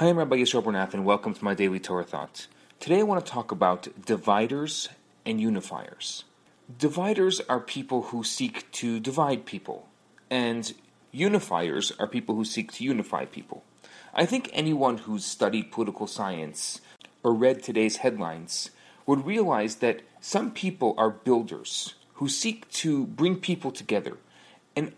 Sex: male